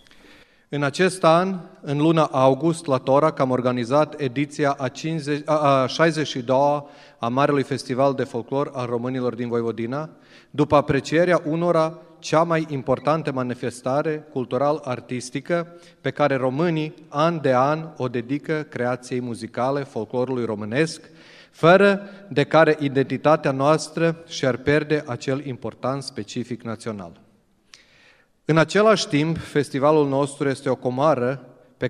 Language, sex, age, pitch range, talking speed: Romanian, male, 30-49, 125-155 Hz, 120 wpm